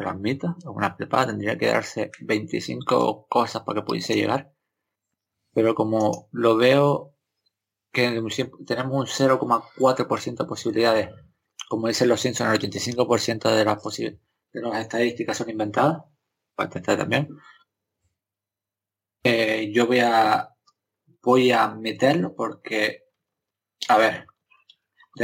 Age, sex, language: 20-39, male, Spanish